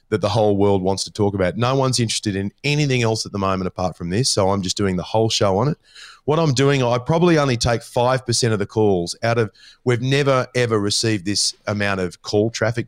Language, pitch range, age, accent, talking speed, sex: English, 100-120 Hz, 30-49, Australian, 240 wpm, male